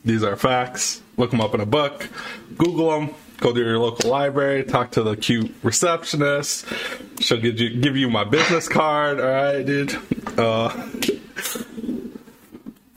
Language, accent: English, American